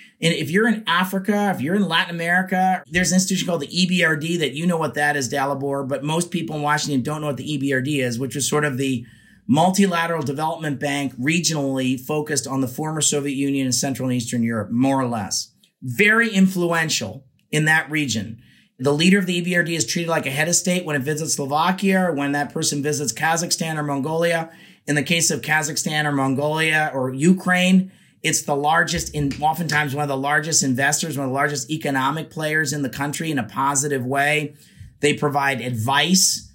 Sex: male